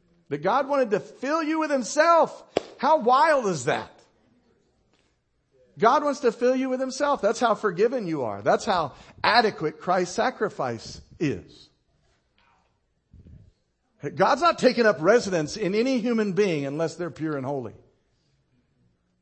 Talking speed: 135 wpm